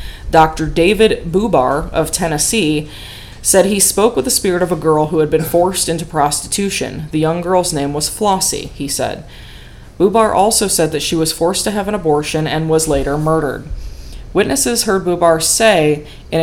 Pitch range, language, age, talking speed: 150-180 Hz, English, 20-39, 175 wpm